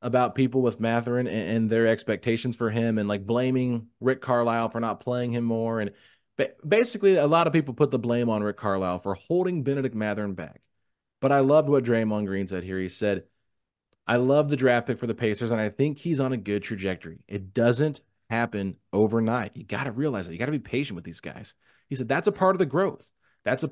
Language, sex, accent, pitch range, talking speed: English, male, American, 110-145 Hz, 225 wpm